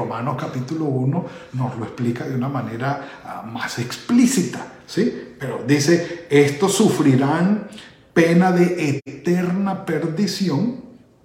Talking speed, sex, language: 105 wpm, male, Spanish